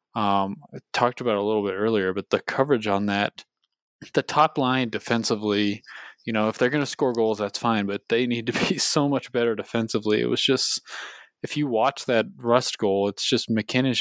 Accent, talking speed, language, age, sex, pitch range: American, 210 wpm, English, 20-39, male, 105-125 Hz